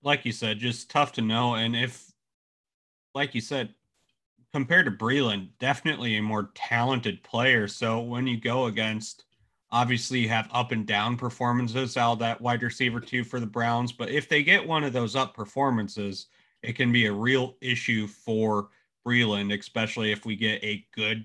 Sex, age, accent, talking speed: male, 30-49, American, 180 wpm